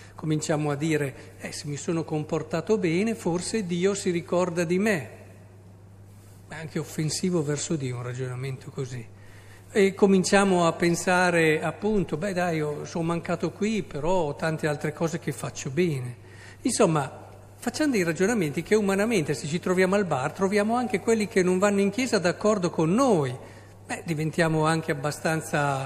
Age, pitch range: 50-69, 130-190 Hz